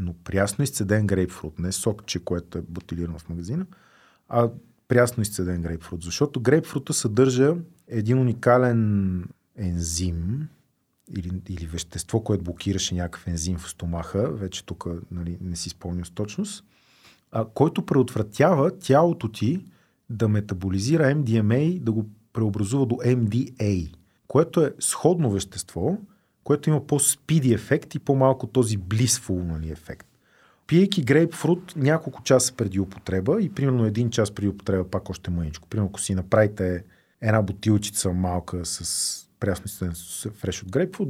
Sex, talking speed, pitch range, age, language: male, 135 wpm, 95-130 Hz, 40-59, Bulgarian